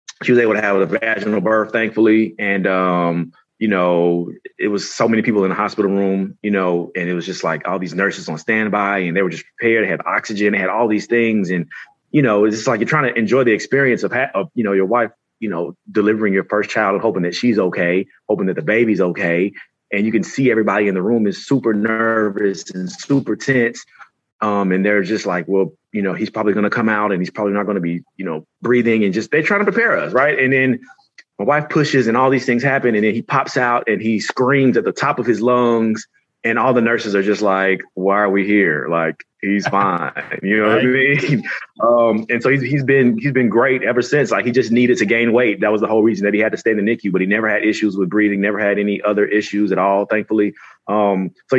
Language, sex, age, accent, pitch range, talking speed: English, male, 30-49, American, 100-120 Hz, 255 wpm